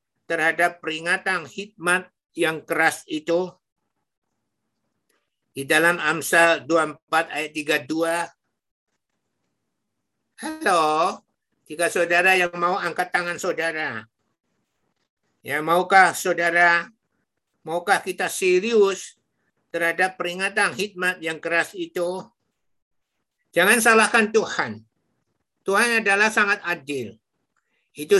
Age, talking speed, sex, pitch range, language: 60-79, 85 wpm, male, 170-220 Hz, Indonesian